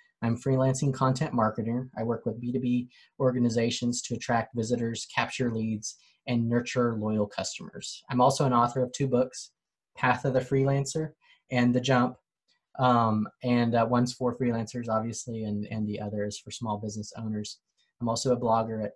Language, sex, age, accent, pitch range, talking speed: English, male, 20-39, American, 110-130 Hz, 170 wpm